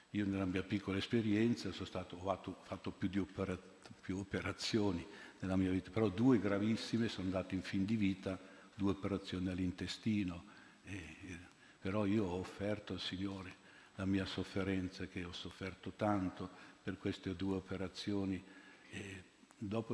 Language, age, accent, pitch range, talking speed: Italian, 60-79, native, 95-105 Hz, 155 wpm